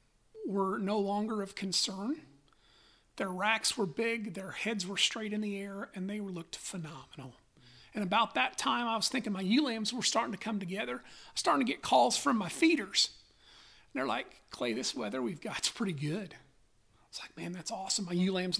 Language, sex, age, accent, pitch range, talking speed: English, male, 40-59, American, 190-240 Hz, 200 wpm